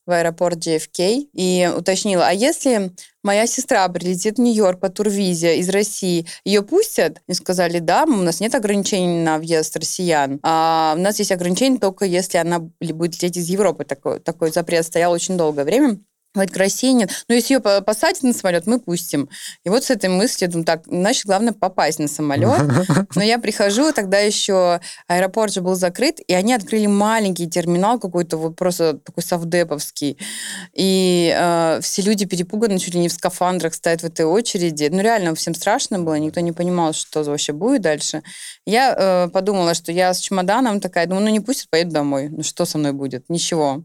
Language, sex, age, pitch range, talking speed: Russian, female, 20-39, 165-205 Hz, 180 wpm